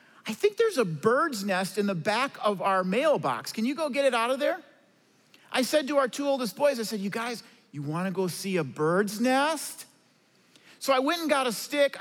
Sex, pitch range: male, 210-270 Hz